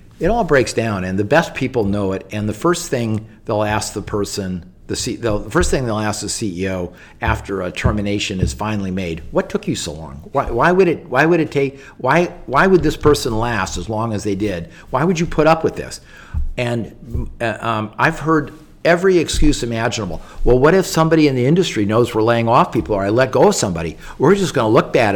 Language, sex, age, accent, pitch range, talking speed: English, male, 50-69, American, 100-130 Hz, 225 wpm